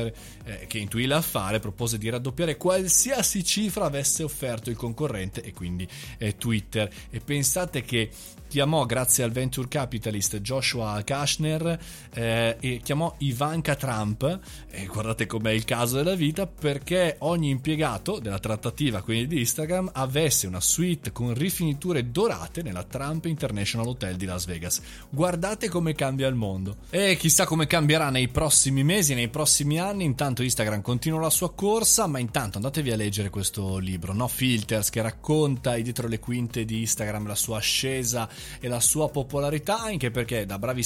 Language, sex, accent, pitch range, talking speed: Italian, male, native, 110-150 Hz, 160 wpm